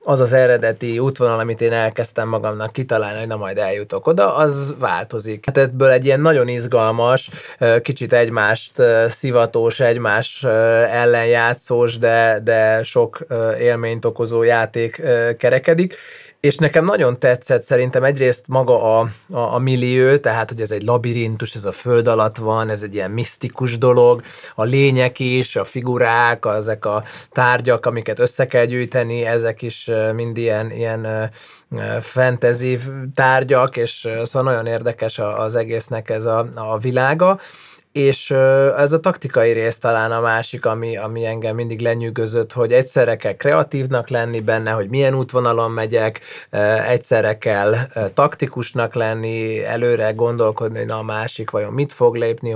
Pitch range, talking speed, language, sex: 115-130 Hz, 145 wpm, Hungarian, male